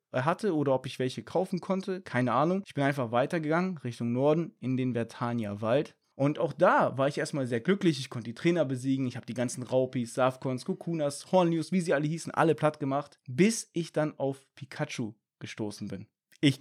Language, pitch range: German, 135-170 Hz